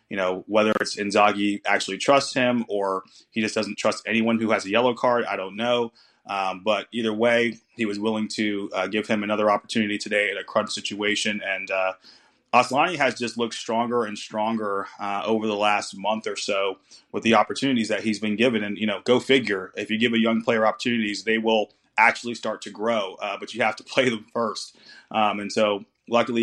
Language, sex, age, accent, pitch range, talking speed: English, male, 30-49, American, 105-120 Hz, 210 wpm